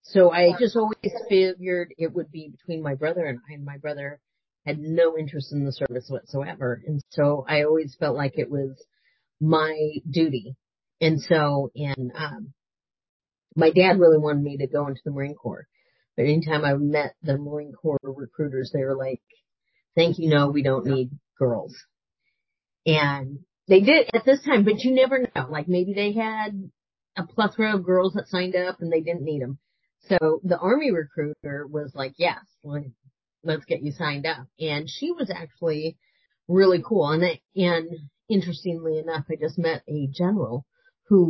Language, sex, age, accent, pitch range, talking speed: English, female, 40-59, American, 145-180 Hz, 175 wpm